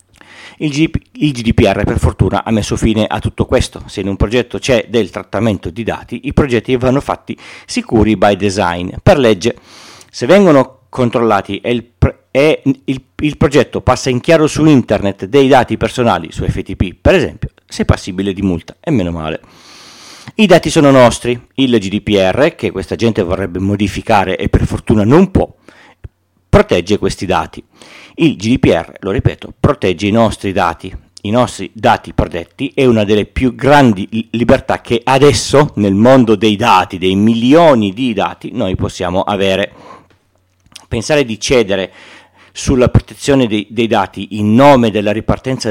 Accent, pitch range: native, 100-125 Hz